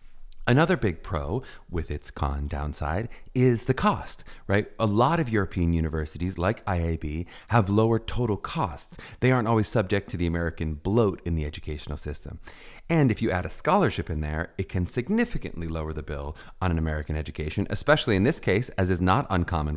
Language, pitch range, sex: English, 80-110 Hz, male